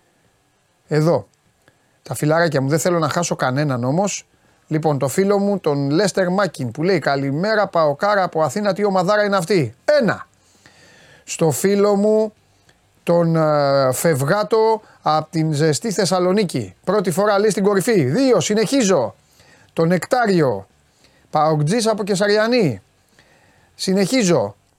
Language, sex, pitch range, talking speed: Greek, male, 150-205 Hz, 120 wpm